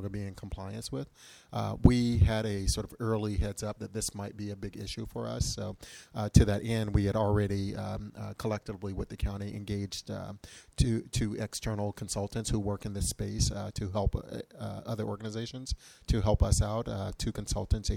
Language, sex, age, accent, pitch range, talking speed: English, male, 30-49, American, 100-110 Hz, 205 wpm